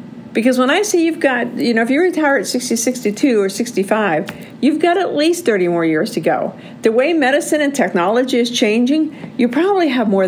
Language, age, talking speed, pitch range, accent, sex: English, 50-69, 210 wpm, 195-245 Hz, American, female